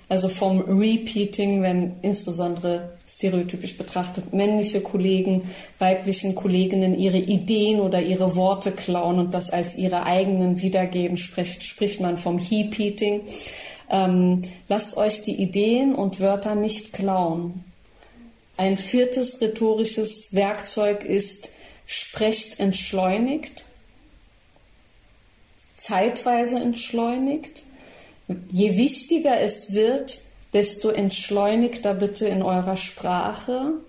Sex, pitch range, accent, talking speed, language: female, 185-220 Hz, German, 100 wpm, German